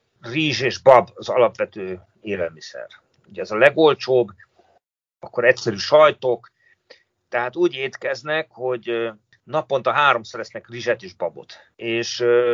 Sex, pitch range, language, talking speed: male, 115-145 Hz, Hungarian, 115 wpm